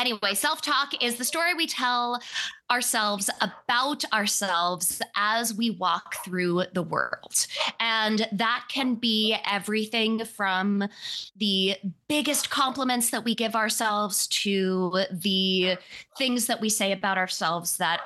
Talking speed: 125 wpm